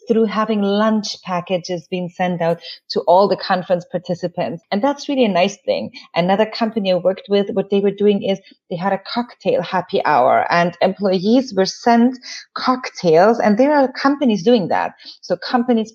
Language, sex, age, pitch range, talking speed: English, female, 30-49, 195-240 Hz, 175 wpm